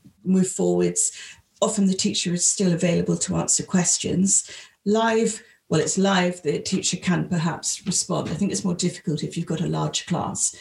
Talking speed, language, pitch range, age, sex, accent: 175 wpm, English, 175-210 Hz, 40-59, female, British